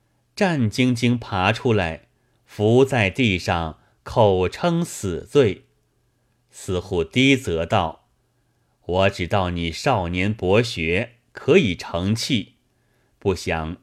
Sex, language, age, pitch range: male, Chinese, 30-49, 95-125 Hz